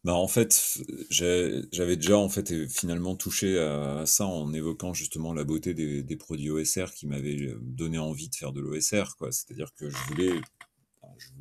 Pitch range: 75-100 Hz